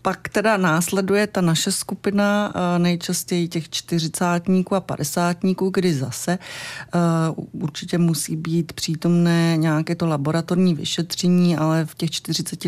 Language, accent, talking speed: Czech, native, 125 wpm